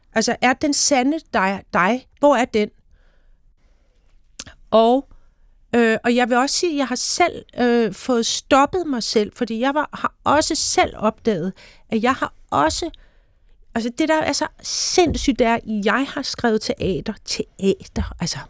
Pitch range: 195-250 Hz